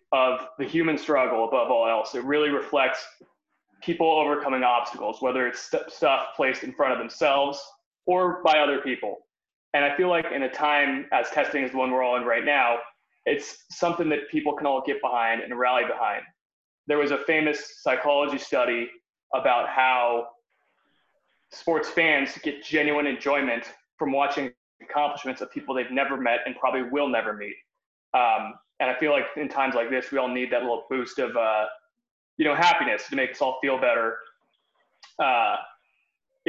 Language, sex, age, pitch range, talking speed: English, male, 20-39, 125-150 Hz, 175 wpm